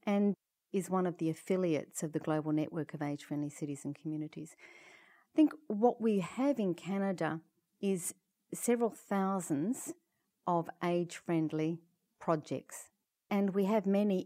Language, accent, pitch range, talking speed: English, Australian, 165-210 Hz, 135 wpm